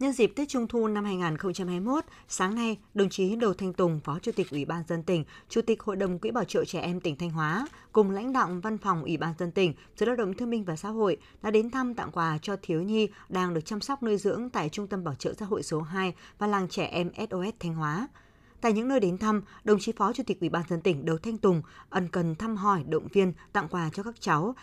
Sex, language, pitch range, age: female, Vietnamese, 175-225 Hz, 20-39